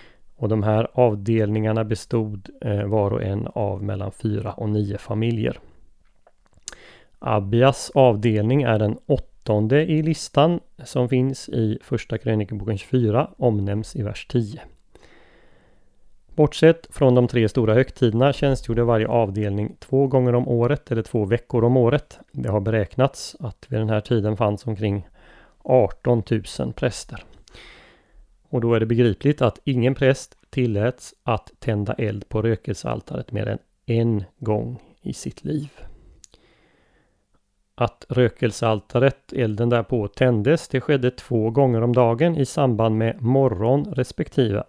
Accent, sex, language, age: native, male, Swedish, 30-49